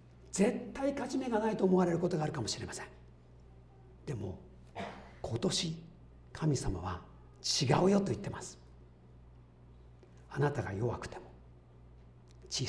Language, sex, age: Japanese, male, 50-69